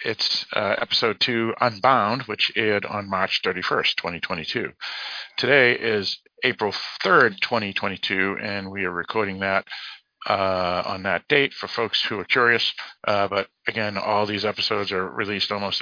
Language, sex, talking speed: English, male, 150 wpm